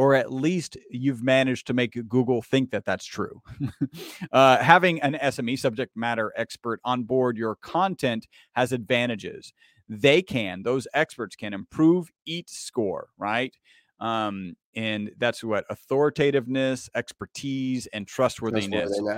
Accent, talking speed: American, 130 wpm